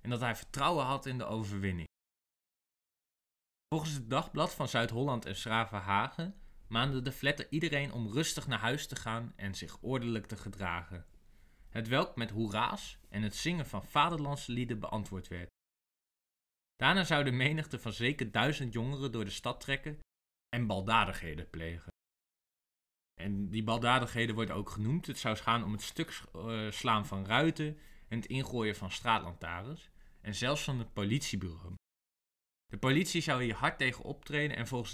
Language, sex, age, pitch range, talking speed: Dutch, male, 20-39, 100-140 Hz, 160 wpm